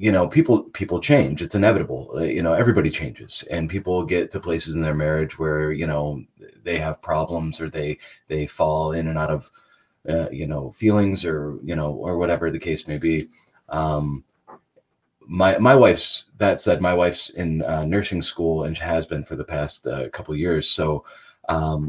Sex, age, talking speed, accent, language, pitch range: male, 30-49, 195 wpm, American, English, 80-95 Hz